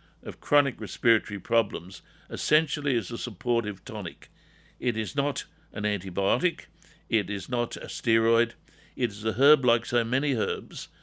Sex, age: male, 60-79